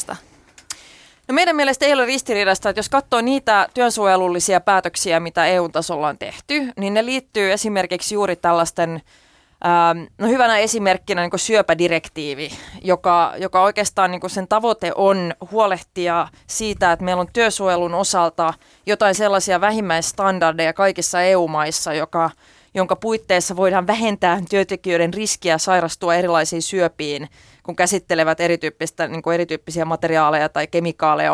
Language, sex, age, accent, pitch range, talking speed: Finnish, female, 20-39, native, 170-210 Hz, 125 wpm